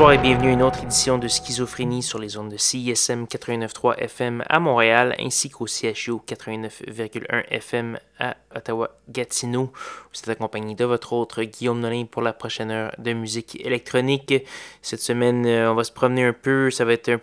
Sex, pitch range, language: male, 115-125 Hz, French